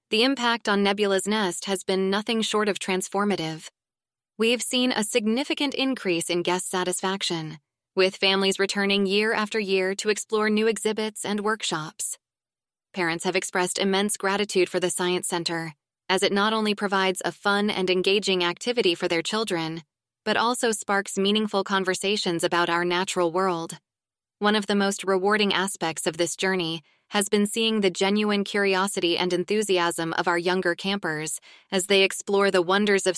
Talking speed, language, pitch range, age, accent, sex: 160 wpm, English, 180-210 Hz, 20-39, American, female